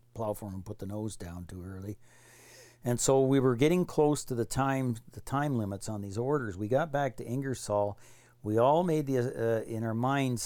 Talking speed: 205 wpm